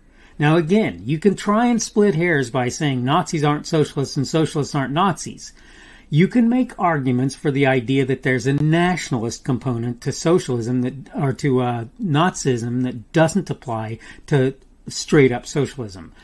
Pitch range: 125-165 Hz